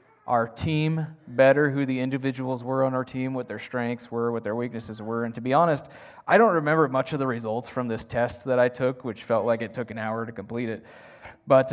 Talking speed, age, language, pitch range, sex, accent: 235 wpm, 20-39, English, 125-160 Hz, male, American